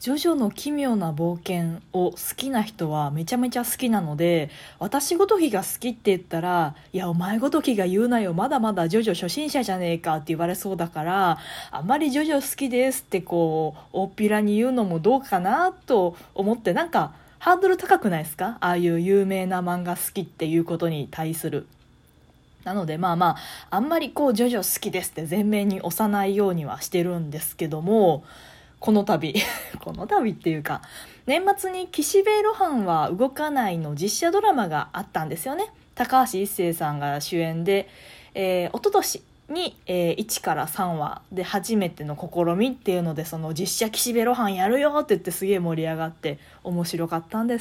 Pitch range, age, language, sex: 170-255 Hz, 20-39, Japanese, female